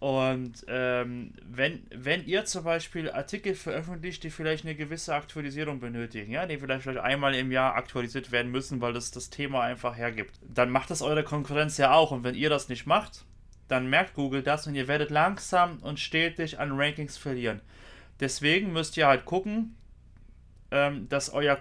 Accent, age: German, 30-49